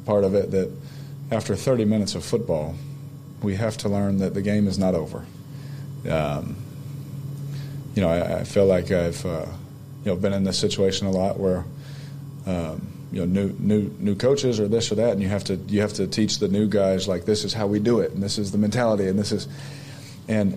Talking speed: 220 wpm